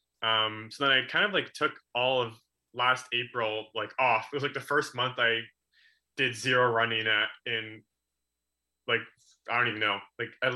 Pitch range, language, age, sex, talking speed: 110-130 Hz, English, 20-39, male, 190 wpm